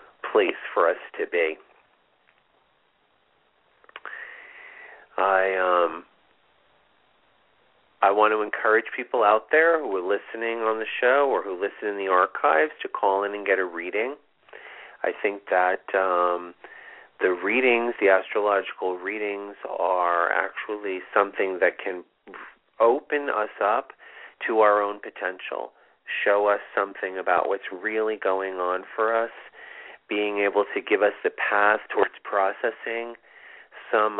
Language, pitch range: English, 95-120 Hz